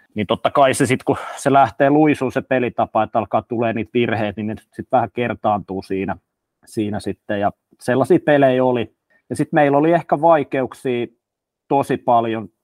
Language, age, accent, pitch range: Finnish, 30-49, native, 110-140 Hz